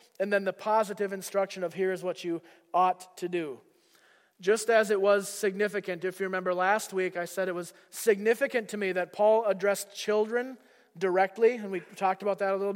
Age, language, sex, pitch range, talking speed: 30-49, English, male, 180-215 Hz, 200 wpm